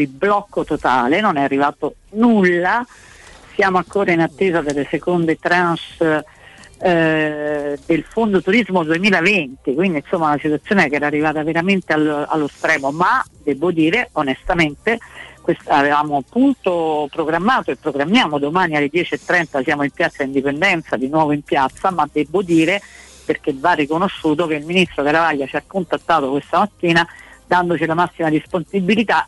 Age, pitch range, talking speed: 50-69, 150-190 Hz, 145 wpm